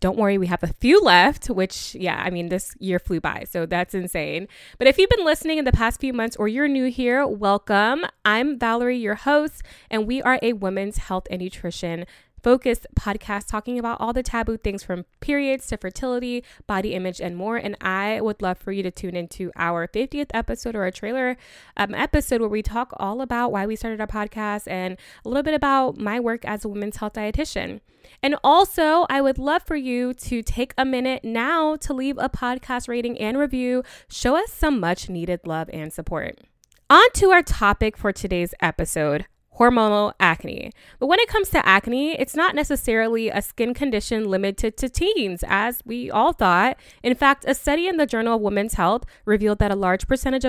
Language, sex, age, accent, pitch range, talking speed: English, female, 20-39, American, 195-265 Hz, 200 wpm